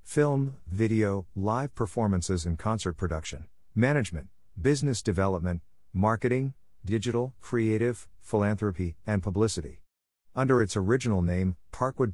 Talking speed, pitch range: 105 wpm, 90-120 Hz